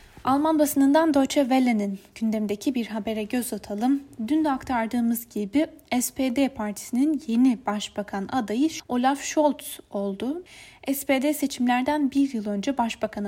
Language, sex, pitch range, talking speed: Turkish, female, 220-275 Hz, 120 wpm